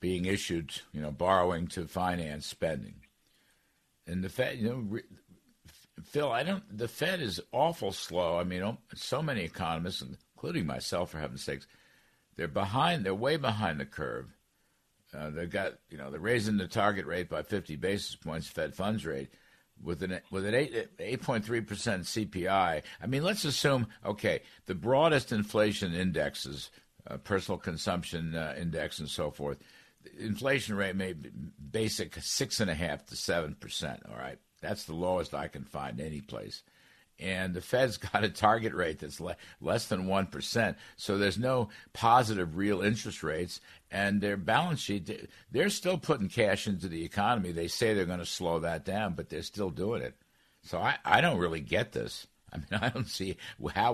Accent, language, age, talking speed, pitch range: American, English, 60-79, 170 wpm, 85-110 Hz